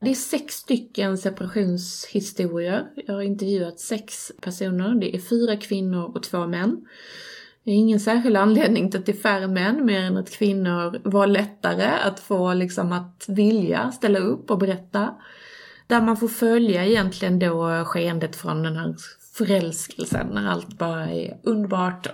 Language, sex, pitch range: Swedish, female, 185-225 Hz